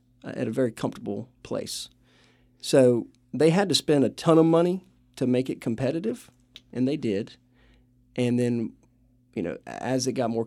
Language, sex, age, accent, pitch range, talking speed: English, male, 40-59, American, 115-130 Hz, 165 wpm